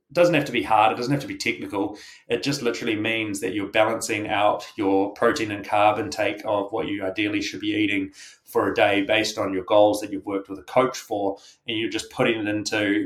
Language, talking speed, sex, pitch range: English, 235 wpm, male, 100-140 Hz